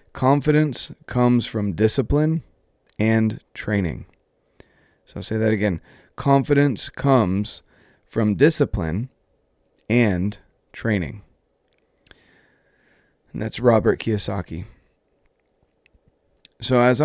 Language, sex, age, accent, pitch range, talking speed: English, male, 30-49, American, 100-125 Hz, 80 wpm